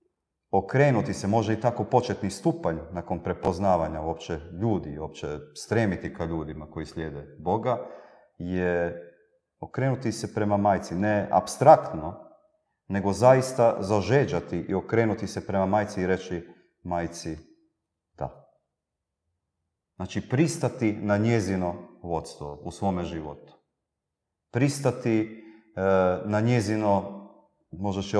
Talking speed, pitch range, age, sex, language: 110 wpm, 85-110 Hz, 40-59, male, Croatian